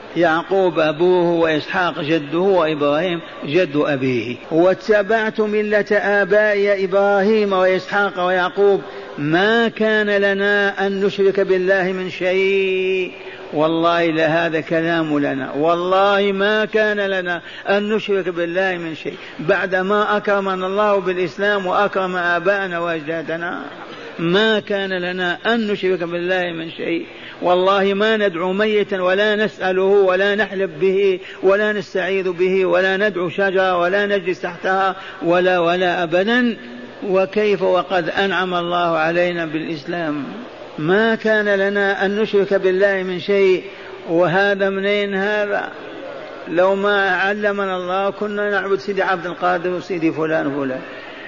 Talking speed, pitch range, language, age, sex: 115 wpm, 175-200 Hz, Arabic, 50-69, male